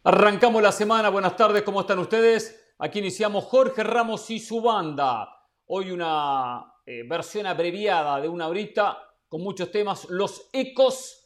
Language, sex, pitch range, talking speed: Spanish, male, 160-230 Hz, 150 wpm